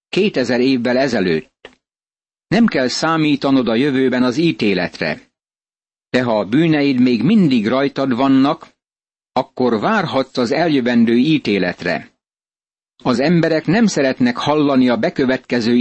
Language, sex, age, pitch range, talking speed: Hungarian, male, 60-79, 125-155 Hz, 115 wpm